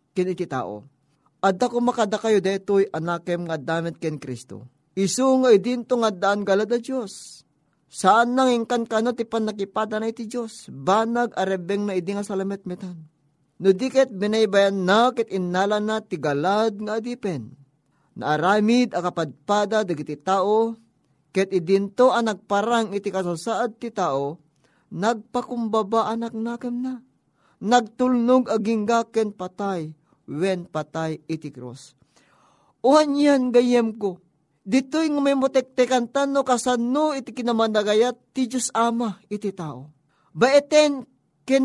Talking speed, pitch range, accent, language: 125 wpm, 165-240 Hz, native, Filipino